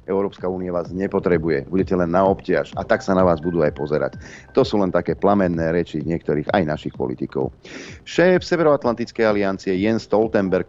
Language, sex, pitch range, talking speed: Slovak, male, 90-120 Hz, 175 wpm